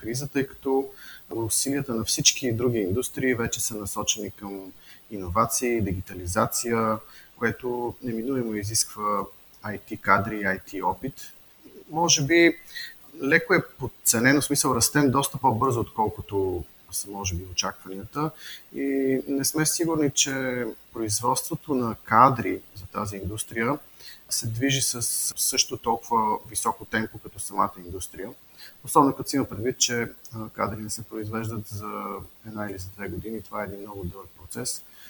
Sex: male